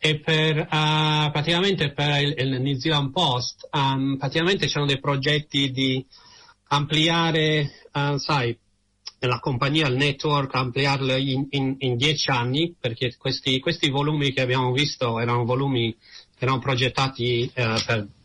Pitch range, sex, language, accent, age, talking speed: 120-155 Hz, male, Italian, native, 40-59, 140 wpm